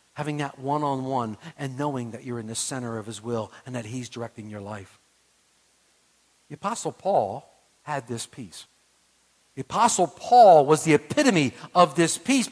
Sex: male